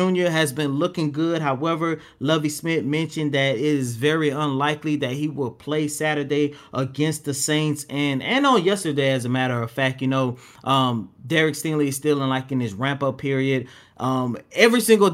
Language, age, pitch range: English, 30-49, 130-150 Hz